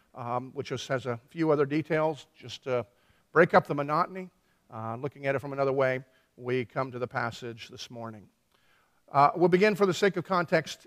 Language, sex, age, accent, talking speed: English, male, 50-69, American, 200 wpm